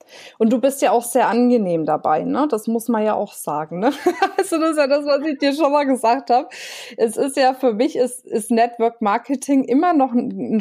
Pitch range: 195-240 Hz